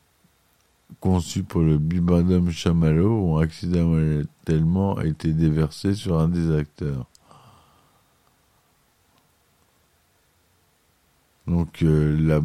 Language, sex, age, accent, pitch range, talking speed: French, male, 50-69, French, 80-90 Hz, 80 wpm